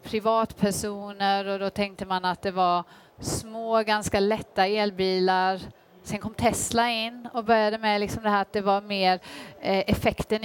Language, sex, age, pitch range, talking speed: Swedish, female, 30-49, 190-235 Hz, 140 wpm